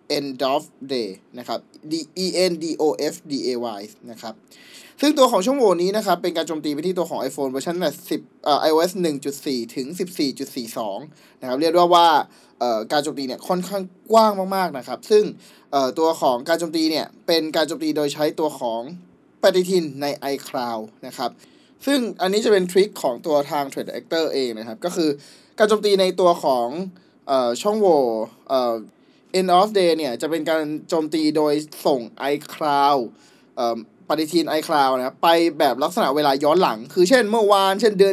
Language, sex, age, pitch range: Thai, male, 20-39, 140-195 Hz